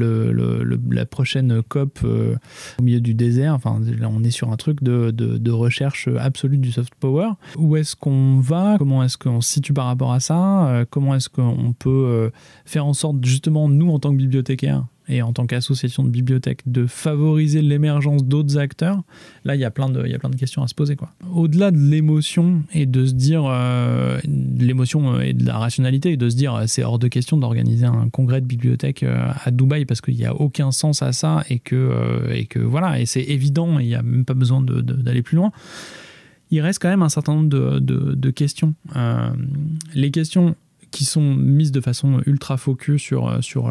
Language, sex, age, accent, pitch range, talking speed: French, male, 20-39, French, 120-150 Hz, 210 wpm